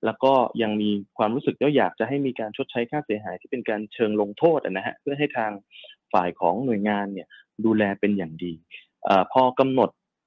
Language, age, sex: Thai, 20-39, male